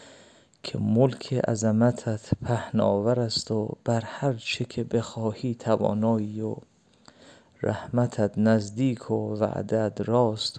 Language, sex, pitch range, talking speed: English, male, 110-125 Hz, 100 wpm